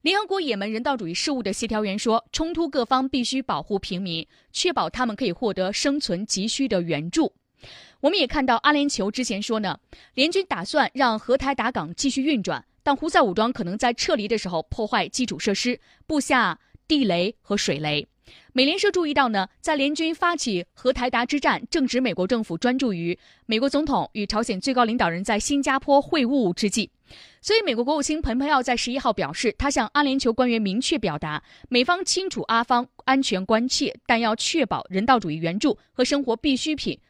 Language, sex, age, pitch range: Chinese, female, 20-39, 200-280 Hz